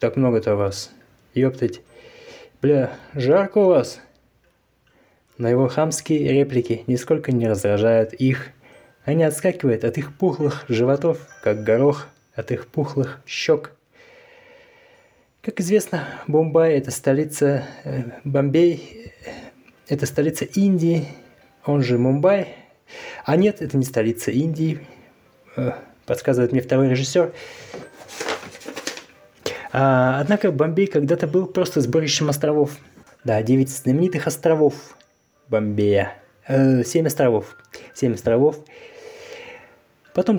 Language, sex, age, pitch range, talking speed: Russian, male, 20-39, 125-170 Hz, 105 wpm